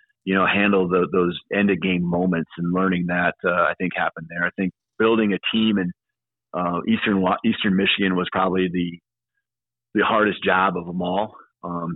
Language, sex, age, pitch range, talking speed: English, male, 40-59, 85-95 Hz, 185 wpm